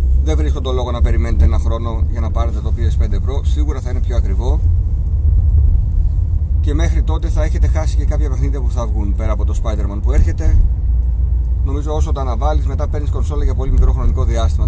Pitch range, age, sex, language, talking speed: 75-85 Hz, 30-49, male, Greek, 200 wpm